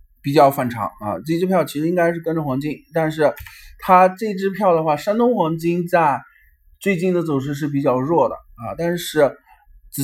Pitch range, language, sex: 135-195 Hz, Chinese, male